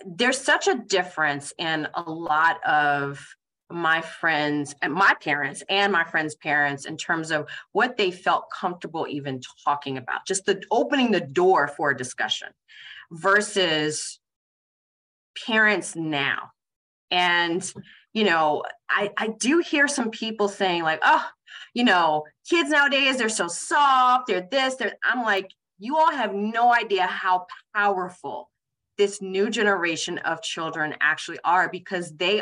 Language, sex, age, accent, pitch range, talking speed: English, female, 30-49, American, 165-225 Hz, 145 wpm